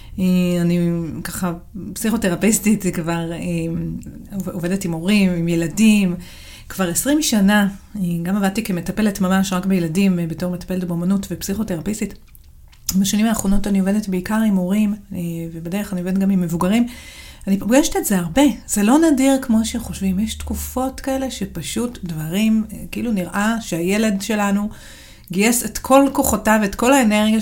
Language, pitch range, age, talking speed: Hebrew, 175-215 Hz, 40-59, 135 wpm